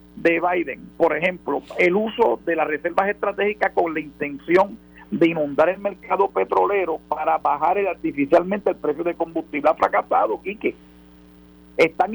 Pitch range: 150-200 Hz